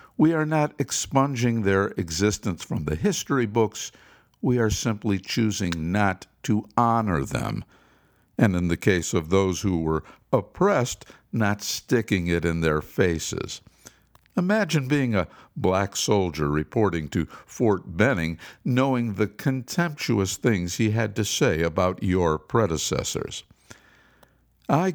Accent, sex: American, male